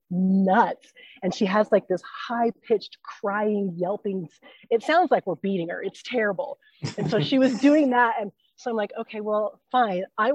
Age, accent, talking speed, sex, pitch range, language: 30-49, American, 180 wpm, female, 175-240 Hz, English